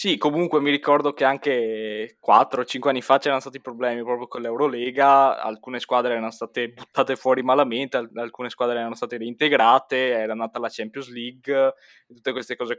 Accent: native